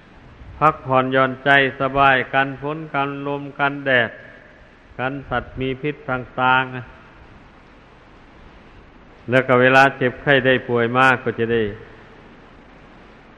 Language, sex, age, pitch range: Thai, male, 60-79, 130-140 Hz